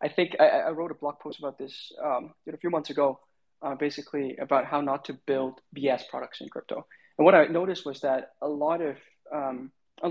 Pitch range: 130-155 Hz